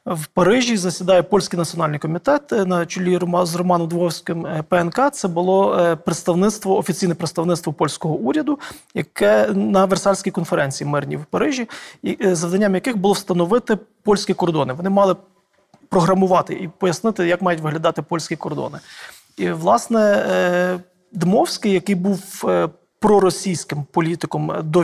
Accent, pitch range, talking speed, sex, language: native, 170-200 Hz, 120 wpm, male, Ukrainian